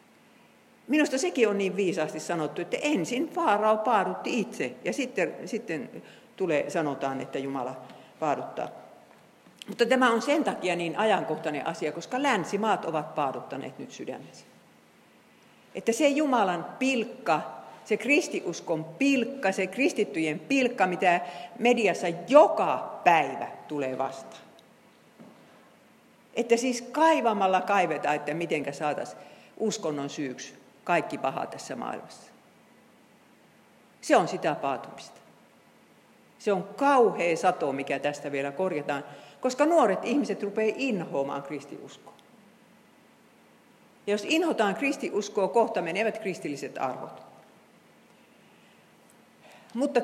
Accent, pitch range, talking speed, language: native, 155-240 Hz, 105 wpm, Finnish